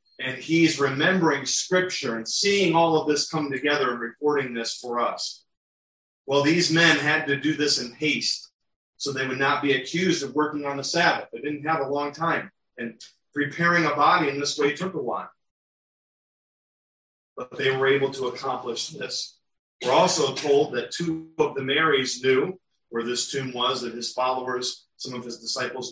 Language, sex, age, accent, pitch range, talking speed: English, male, 40-59, American, 125-150 Hz, 185 wpm